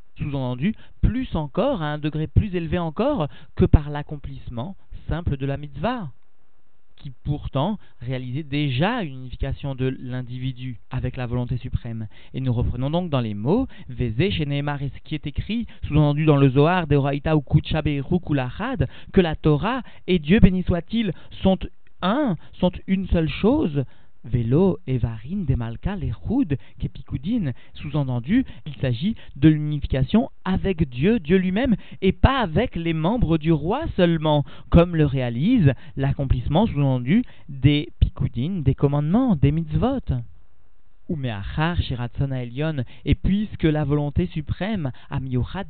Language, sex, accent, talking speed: French, male, French, 130 wpm